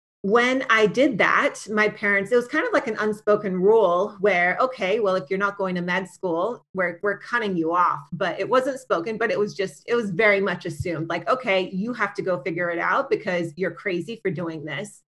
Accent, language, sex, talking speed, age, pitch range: American, English, female, 225 wpm, 30-49, 190-225 Hz